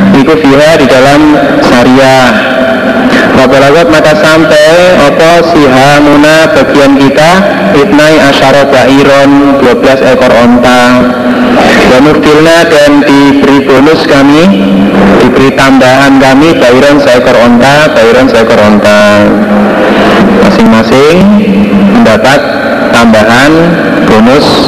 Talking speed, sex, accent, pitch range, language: 90 wpm, male, native, 110-145 Hz, Indonesian